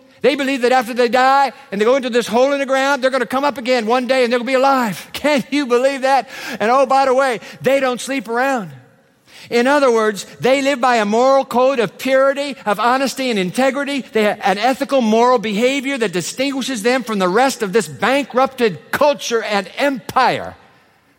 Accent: American